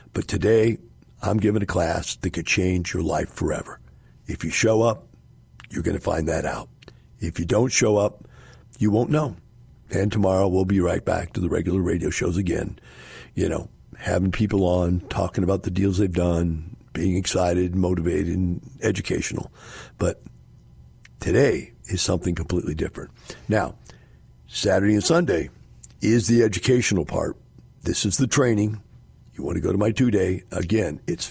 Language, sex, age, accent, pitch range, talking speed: English, male, 60-79, American, 90-110 Hz, 165 wpm